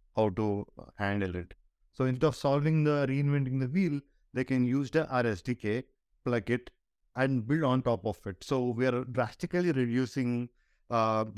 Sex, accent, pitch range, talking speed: male, Indian, 110-130 Hz, 165 wpm